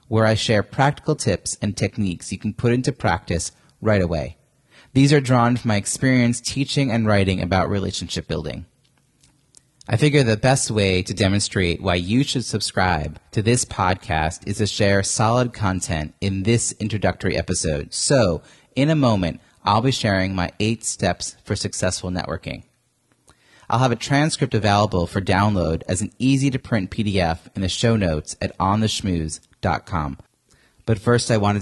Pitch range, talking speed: 90-120 Hz, 160 wpm